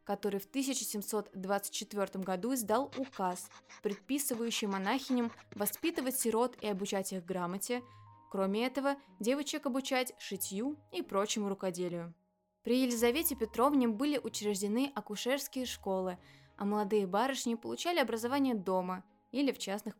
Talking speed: 115 wpm